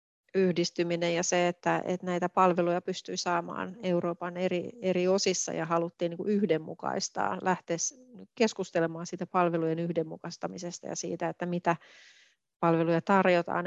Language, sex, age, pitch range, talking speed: Finnish, female, 30-49, 170-190 Hz, 125 wpm